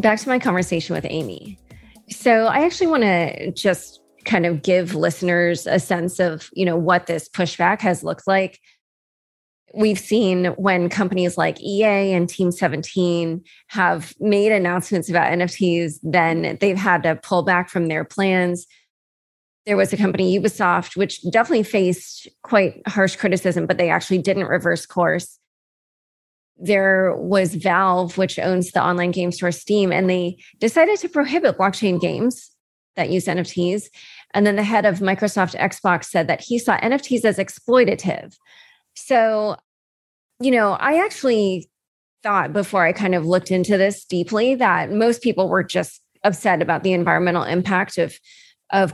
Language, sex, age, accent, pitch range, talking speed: English, female, 20-39, American, 175-210 Hz, 155 wpm